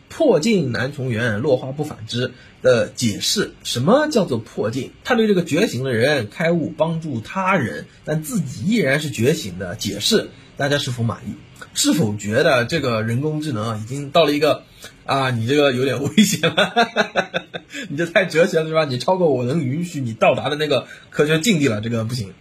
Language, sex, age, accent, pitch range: Chinese, male, 20-39, native, 120-170 Hz